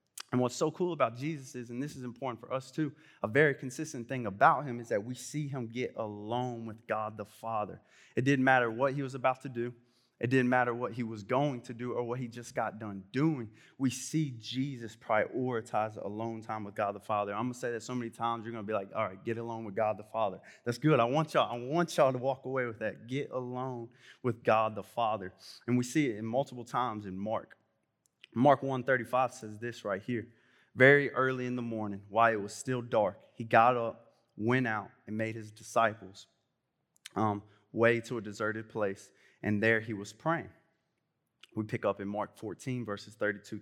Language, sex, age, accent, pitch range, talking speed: English, male, 20-39, American, 110-130 Hz, 220 wpm